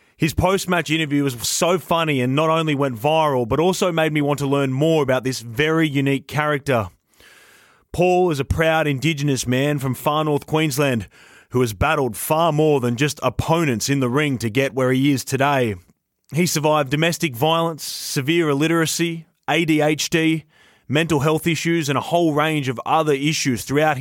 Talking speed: 170 wpm